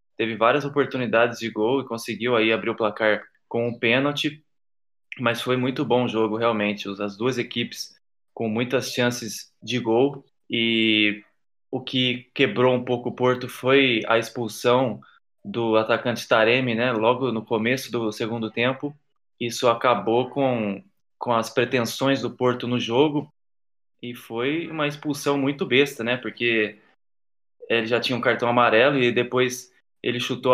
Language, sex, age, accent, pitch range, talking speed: Portuguese, male, 20-39, Brazilian, 115-125 Hz, 155 wpm